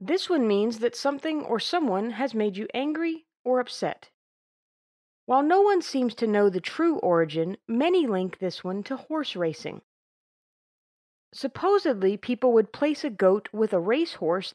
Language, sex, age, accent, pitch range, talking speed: English, female, 40-59, American, 195-270 Hz, 155 wpm